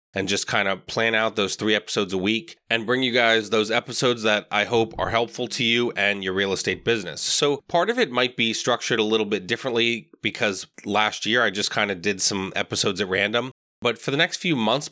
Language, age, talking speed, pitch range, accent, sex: English, 20-39, 235 wpm, 100-115 Hz, American, male